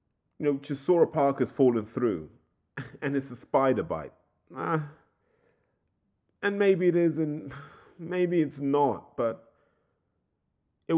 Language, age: English, 20-39